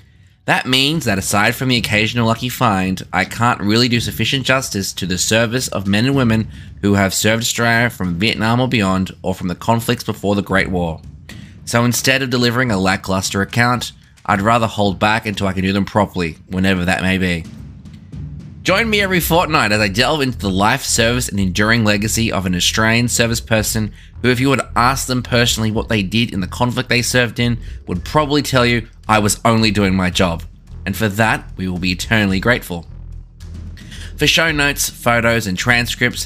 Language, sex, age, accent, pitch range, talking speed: English, male, 20-39, Australian, 95-120 Hz, 195 wpm